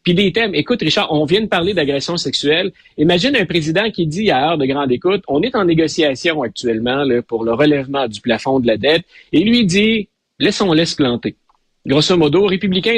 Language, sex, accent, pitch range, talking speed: French, male, Canadian, 130-190 Hz, 215 wpm